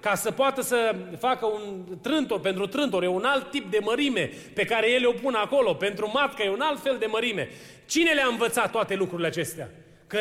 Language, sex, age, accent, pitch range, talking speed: Romanian, male, 30-49, native, 195-260 Hz, 210 wpm